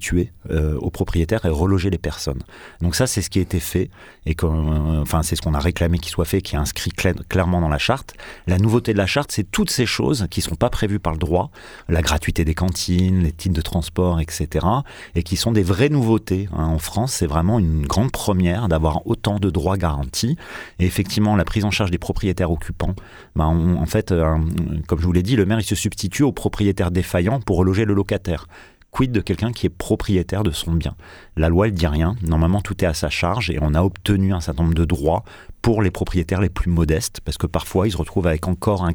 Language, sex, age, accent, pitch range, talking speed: French, male, 30-49, French, 85-100 Hz, 235 wpm